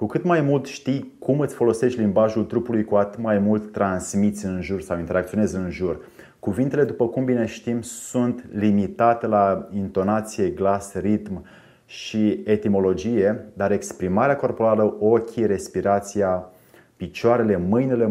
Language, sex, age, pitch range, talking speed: Romanian, male, 30-49, 100-115 Hz, 135 wpm